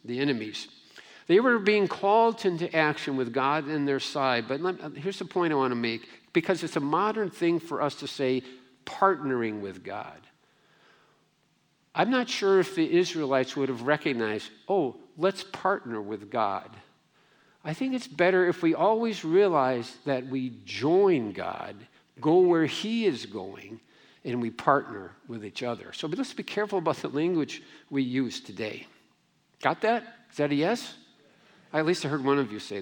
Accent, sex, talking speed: American, male, 175 wpm